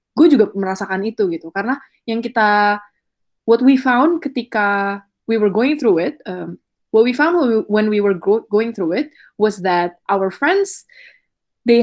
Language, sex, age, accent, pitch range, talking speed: Indonesian, female, 20-39, native, 185-235 Hz, 165 wpm